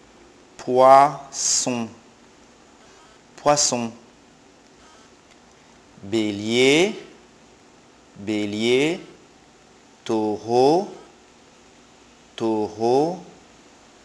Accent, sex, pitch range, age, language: French, male, 110-145 Hz, 50-69, English